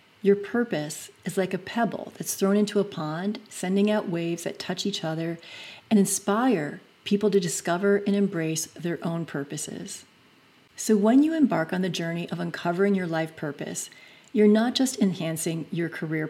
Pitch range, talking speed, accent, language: 175-210 Hz, 170 wpm, American, English